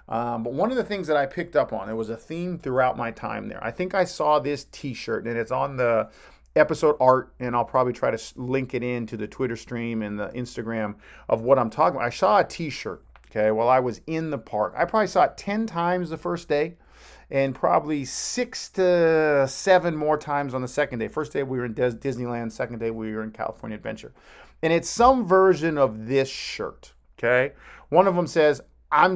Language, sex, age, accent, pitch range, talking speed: English, male, 40-59, American, 115-160 Hz, 220 wpm